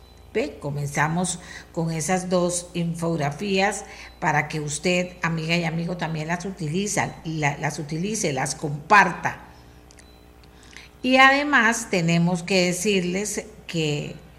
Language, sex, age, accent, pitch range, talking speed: Spanish, female, 50-69, American, 155-200 Hz, 105 wpm